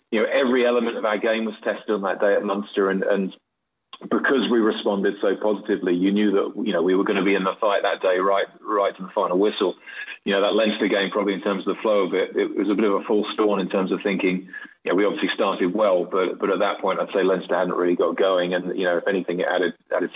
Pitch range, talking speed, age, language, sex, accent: 95-110 Hz, 275 wpm, 30-49, English, male, British